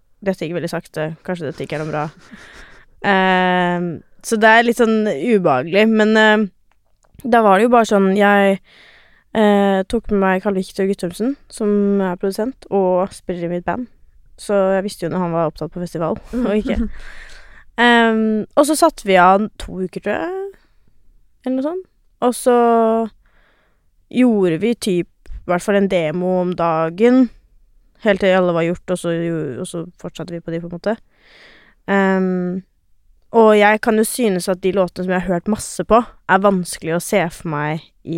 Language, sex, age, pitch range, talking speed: English, female, 20-39, 175-215 Hz, 185 wpm